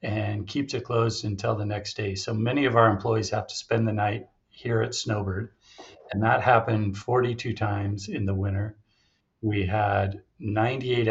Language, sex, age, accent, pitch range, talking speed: English, male, 40-59, American, 100-115 Hz, 175 wpm